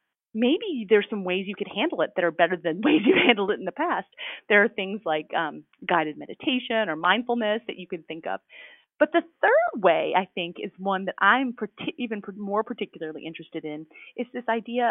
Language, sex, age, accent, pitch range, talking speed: English, female, 30-49, American, 175-260 Hz, 205 wpm